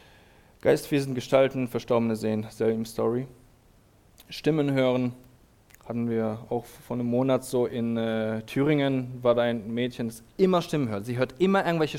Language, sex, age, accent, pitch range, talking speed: German, male, 20-39, German, 110-140 Hz, 150 wpm